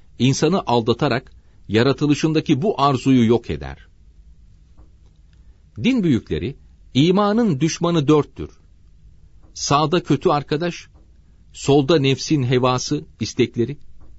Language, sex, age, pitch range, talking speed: Turkish, male, 40-59, 85-130 Hz, 80 wpm